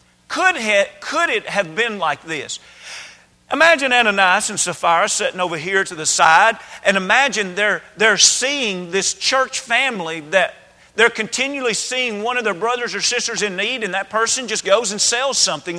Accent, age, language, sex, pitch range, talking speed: American, 40-59, English, male, 190-255 Hz, 170 wpm